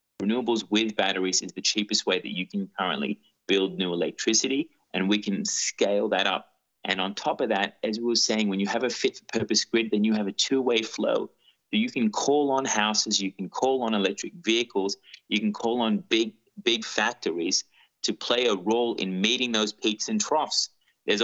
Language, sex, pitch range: English, male, 95-115 Hz